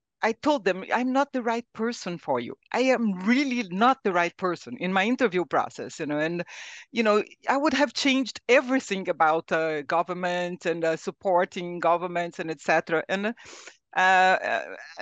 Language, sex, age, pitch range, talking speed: English, female, 60-79, 170-220 Hz, 175 wpm